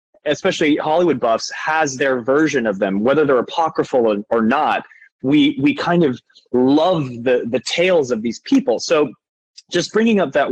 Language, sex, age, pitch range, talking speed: English, male, 20-39, 110-140 Hz, 165 wpm